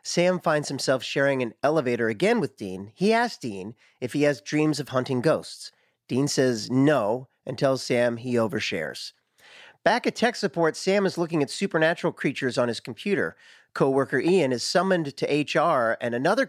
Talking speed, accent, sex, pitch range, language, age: 175 wpm, American, male, 130-190 Hz, English, 40-59